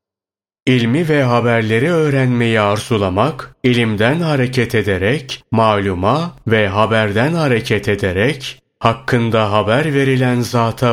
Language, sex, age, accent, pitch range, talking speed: Turkish, male, 30-49, native, 105-130 Hz, 95 wpm